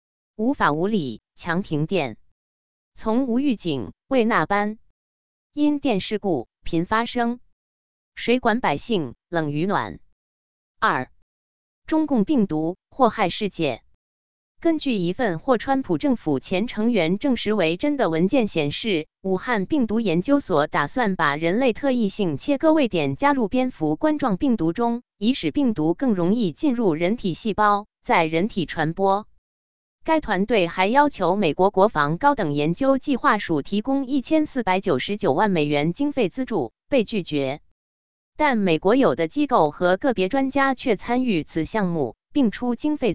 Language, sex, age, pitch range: Chinese, female, 20-39, 160-245 Hz